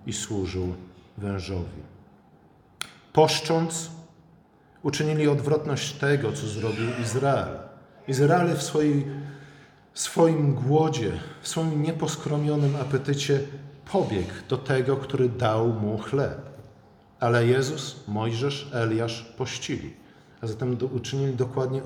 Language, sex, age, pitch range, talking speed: Polish, male, 40-59, 110-145 Hz, 95 wpm